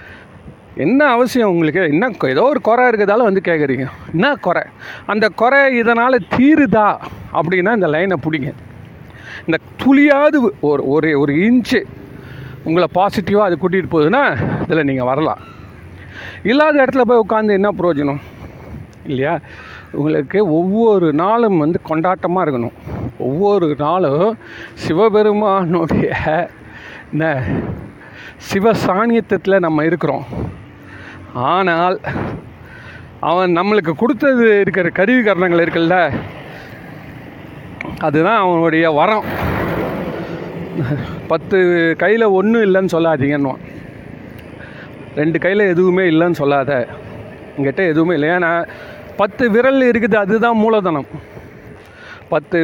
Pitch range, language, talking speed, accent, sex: 155-215 Hz, Tamil, 95 wpm, native, male